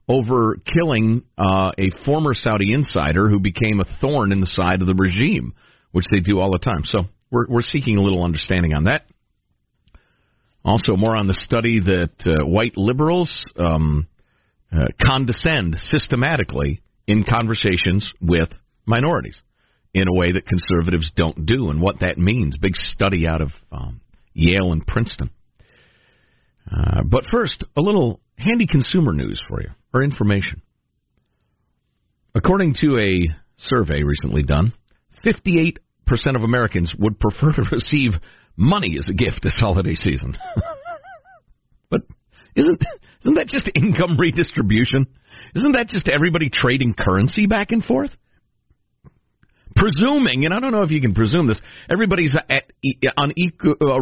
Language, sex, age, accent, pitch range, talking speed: English, male, 50-69, American, 95-145 Hz, 145 wpm